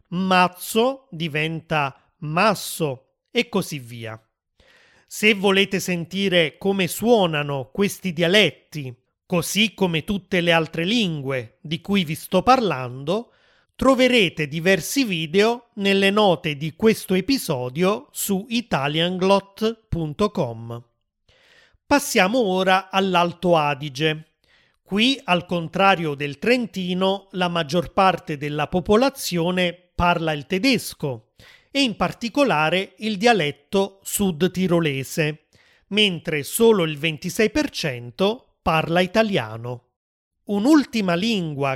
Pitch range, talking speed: 155-210 Hz, 95 wpm